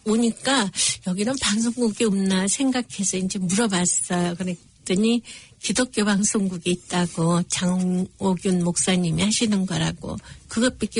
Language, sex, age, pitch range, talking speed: English, female, 60-79, 180-220 Hz, 85 wpm